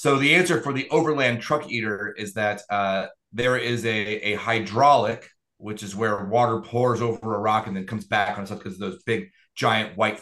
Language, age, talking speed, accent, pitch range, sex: English, 30-49, 210 wpm, American, 110-160 Hz, male